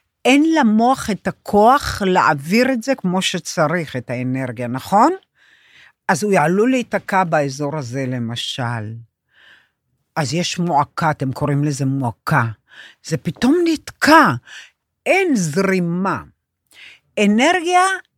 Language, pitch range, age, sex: Hebrew, 170-235 Hz, 60-79, female